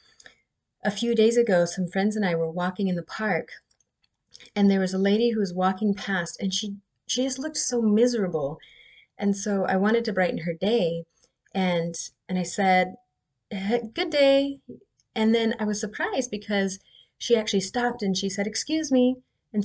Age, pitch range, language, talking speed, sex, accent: 30-49, 180-230 Hz, English, 175 wpm, female, American